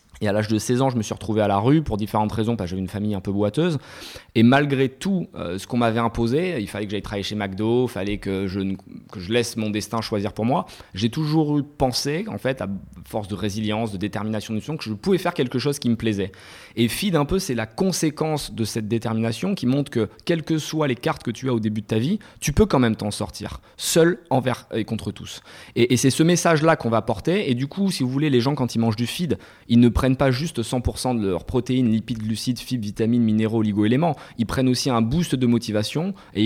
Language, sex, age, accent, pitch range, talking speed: French, male, 20-39, French, 105-130 Hz, 255 wpm